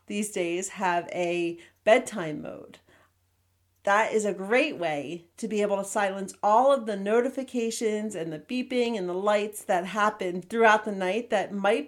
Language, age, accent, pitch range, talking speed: English, 40-59, American, 180-235 Hz, 165 wpm